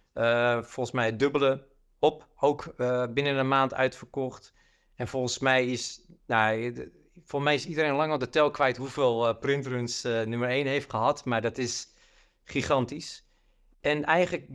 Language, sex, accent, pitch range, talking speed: Dutch, male, Dutch, 120-150 Hz, 155 wpm